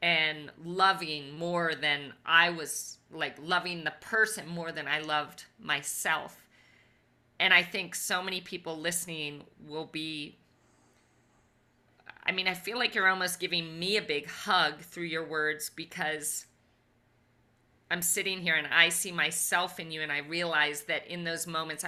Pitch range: 155-190 Hz